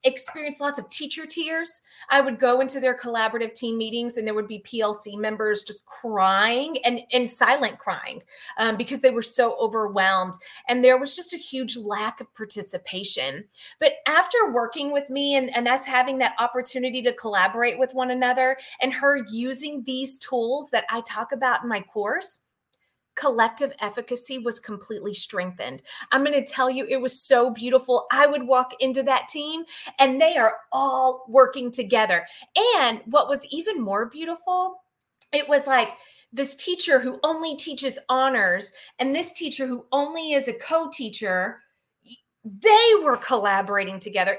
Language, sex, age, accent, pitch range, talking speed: English, female, 30-49, American, 225-280 Hz, 160 wpm